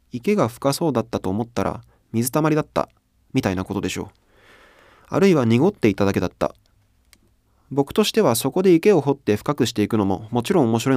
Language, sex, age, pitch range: Japanese, male, 20-39, 105-150 Hz